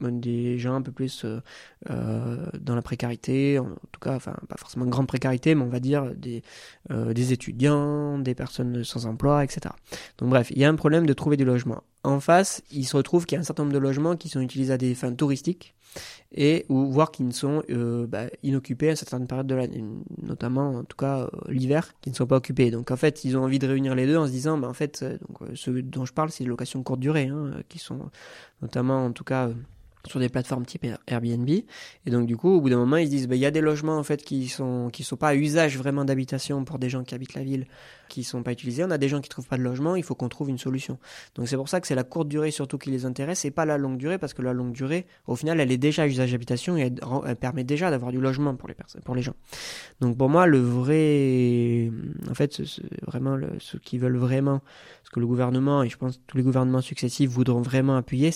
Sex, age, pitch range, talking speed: male, 20-39, 125-150 Hz, 260 wpm